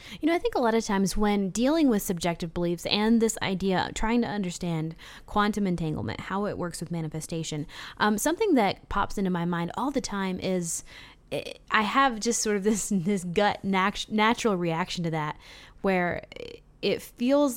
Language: English